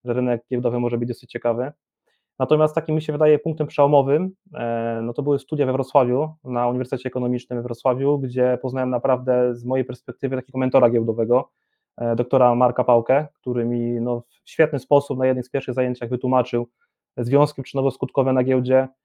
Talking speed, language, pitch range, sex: 170 wpm, Polish, 125-140 Hz, male